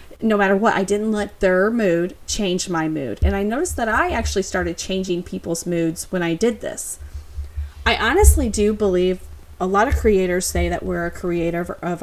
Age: 30-49